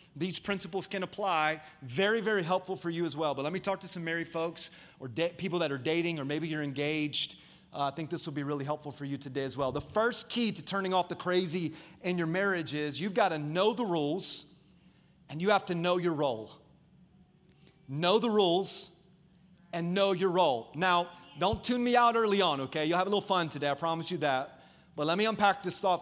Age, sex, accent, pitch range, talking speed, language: 30-49, male, American, 155-190 Hz, 225 wpm, English